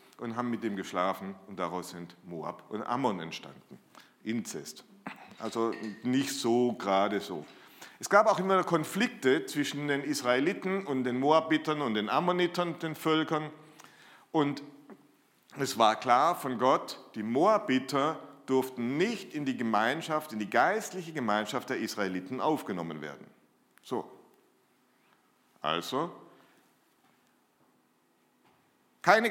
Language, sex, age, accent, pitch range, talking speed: German, male, 40-59, German, 115-165 Hz, 120 wpm